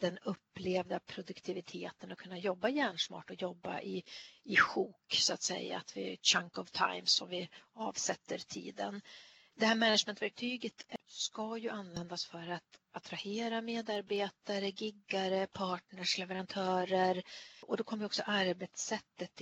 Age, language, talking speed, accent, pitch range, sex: 40-59, Swedish, 135 wpm, native, 185-220 Hz, female